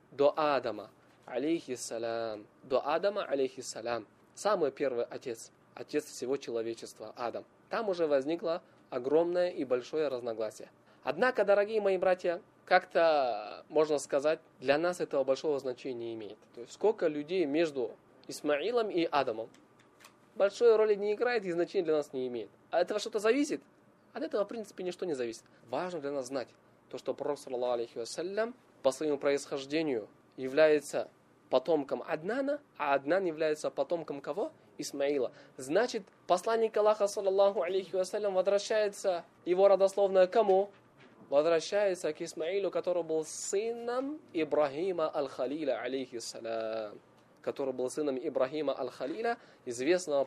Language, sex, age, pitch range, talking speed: Russian, male, 20-39, 135-195 Hz, 125 wpm